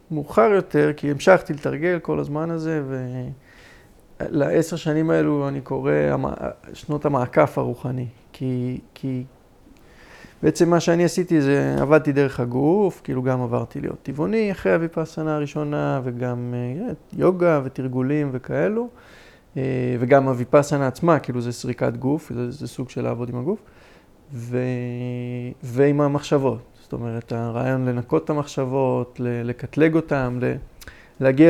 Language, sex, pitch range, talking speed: Hebrew, male, 125-165 Hz, 130 wpm